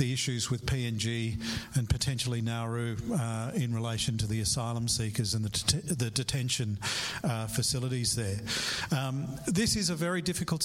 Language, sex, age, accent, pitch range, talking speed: English, male, 50-69, Australian, 120-145 Hz, 160 wpm